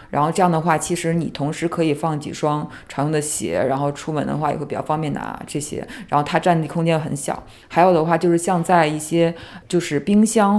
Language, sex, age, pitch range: Chinese, female, 20-39, 150-175 Hz